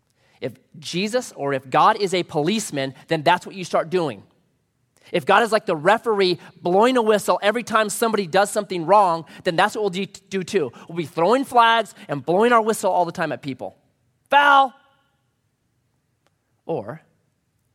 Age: 30-49